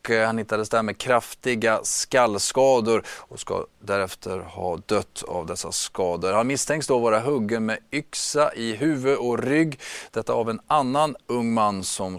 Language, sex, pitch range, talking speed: Swedish, male, 100-125 Hz, 160 wpm